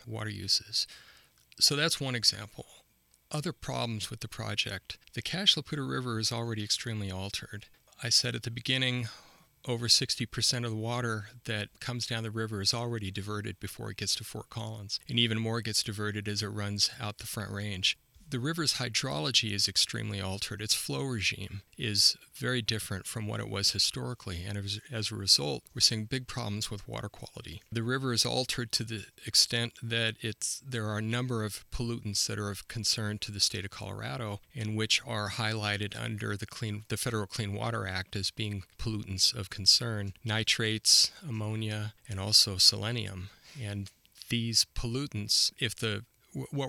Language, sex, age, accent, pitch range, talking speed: English, male, 40-59, American, 105-120 Hz, 175 wpm